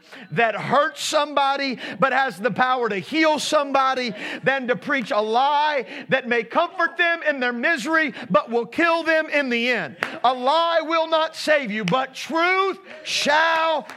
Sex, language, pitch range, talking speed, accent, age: male, English, 160-255 Hz, 165 wpm, American, 50-69